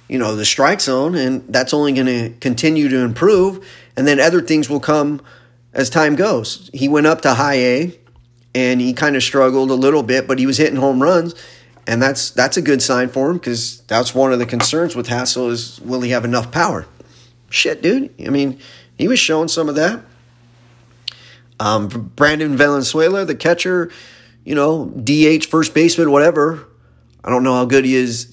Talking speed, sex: 195 wpm, male